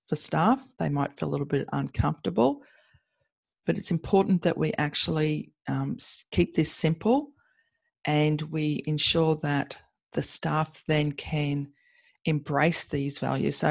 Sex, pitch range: female, 140-170 Hz